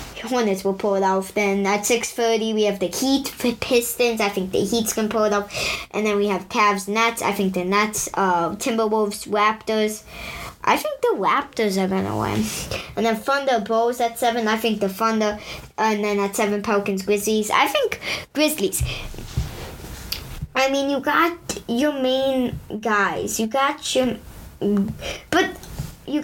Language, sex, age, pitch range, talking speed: English, male, 20-39, 210-270 Hz, 170 wpm